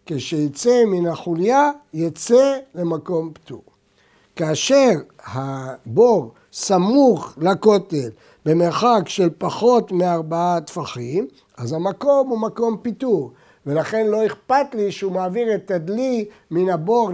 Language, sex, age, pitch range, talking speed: Hebrew, male, 60-79, 155-205 Hz, 105 wpm